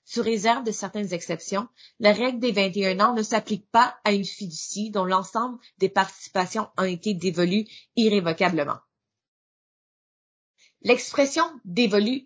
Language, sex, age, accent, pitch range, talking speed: English, female, 30-49, Canadian, 190-235 Hz, 125 wpm